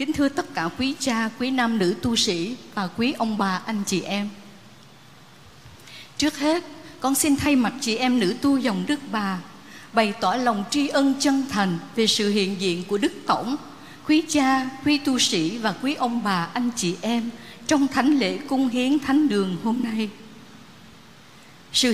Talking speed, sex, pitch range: 185 wpm, female, 205-275 Hz